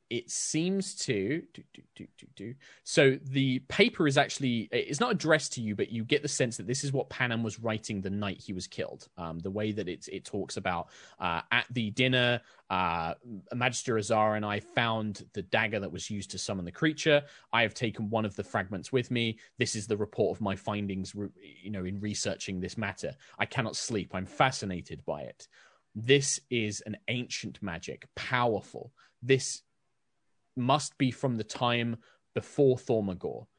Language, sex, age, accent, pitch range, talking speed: English, male, 20-39, British, 105-135 Hz, 190 wpm